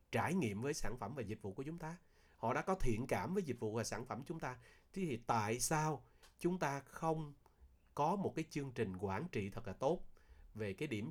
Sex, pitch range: male, 105-145 Hz